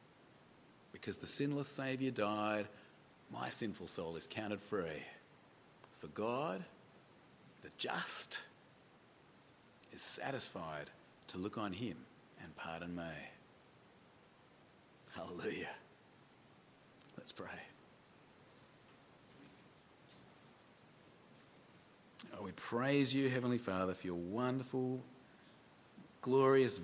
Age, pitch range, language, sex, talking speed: 40-59, 90-130 Hz, English, male, 80 wpm